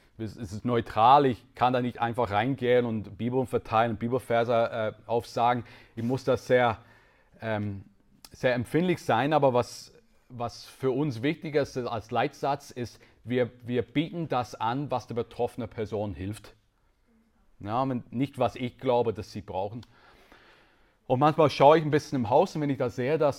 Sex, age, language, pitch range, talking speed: male, 40-59, German, 110-130 Hz, 170 wpm